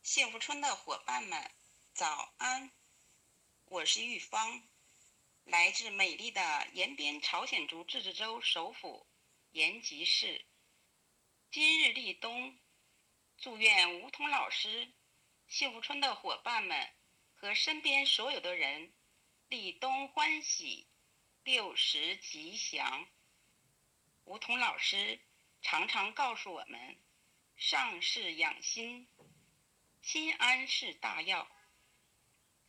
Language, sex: Chinese, female